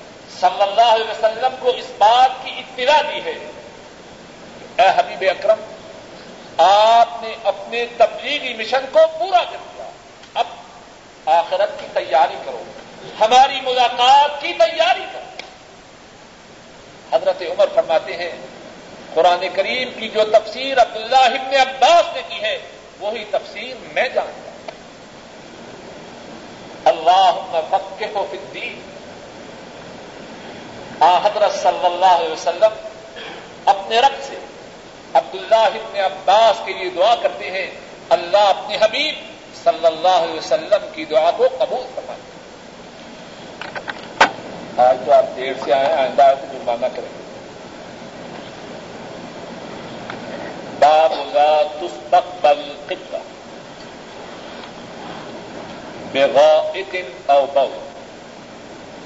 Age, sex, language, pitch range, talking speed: 50-69, male, Urdu, 190-315 Hz, 100 wpm